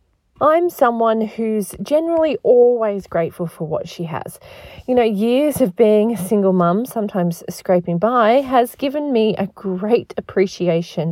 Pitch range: 180-245 Hz